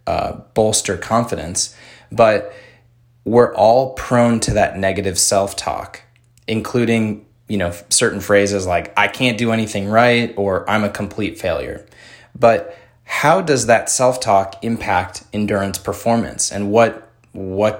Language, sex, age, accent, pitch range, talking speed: English, male, 20-39, American, 100-120 Hz, 130 wpm